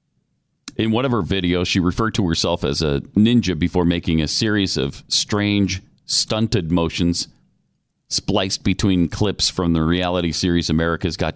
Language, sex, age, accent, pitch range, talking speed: English, male, 40-59, American, 80-110 Hz, 155 wpm